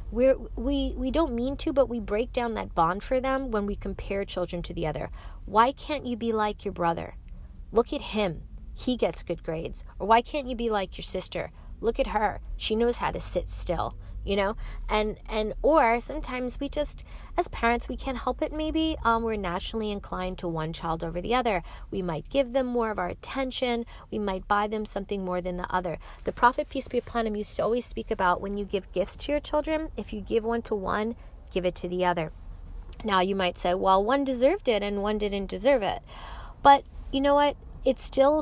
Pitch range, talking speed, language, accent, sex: 190-245 Hz, 220 wpm, English, American, female